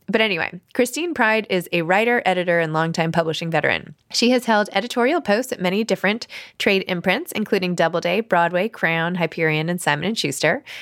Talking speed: 165 wpm